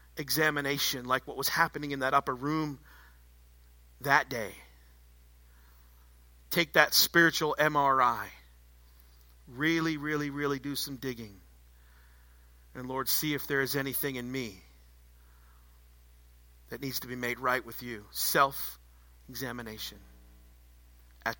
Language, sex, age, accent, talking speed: English, male, 50-69, American, 115 wpm